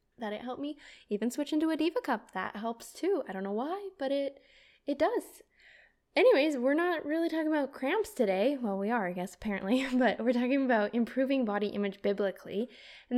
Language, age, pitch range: English, 10-29, 200-255 Hz